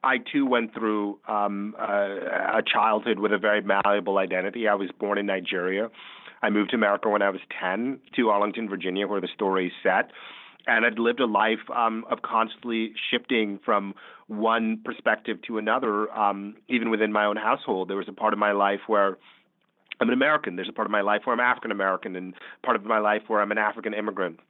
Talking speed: 205 wpm